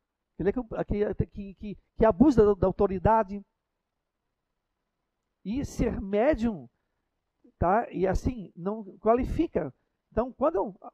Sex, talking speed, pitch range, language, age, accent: male, 110 wpm, 165-220 Hz, Portuguese, 50-69, Brazilian